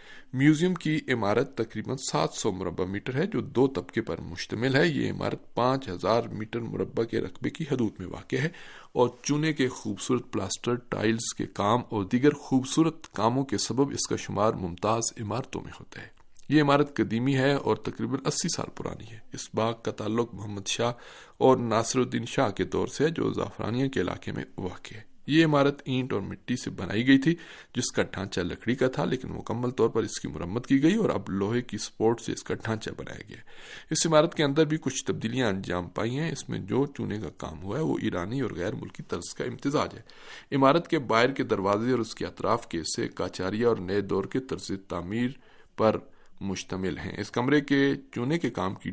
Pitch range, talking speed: 100-135 Hz, 210 wpm